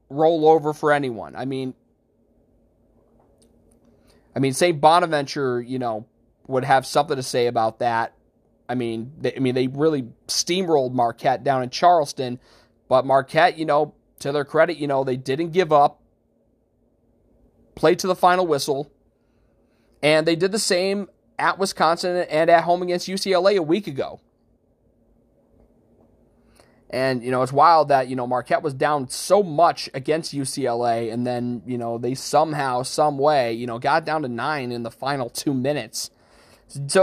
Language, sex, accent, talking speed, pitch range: English, male, American, 160 wpm, 120-170 Hz